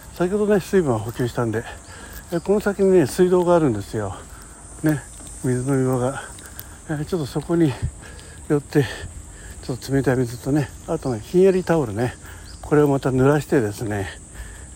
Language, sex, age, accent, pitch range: Japanese, male, 60-79, native, 95-145 Hz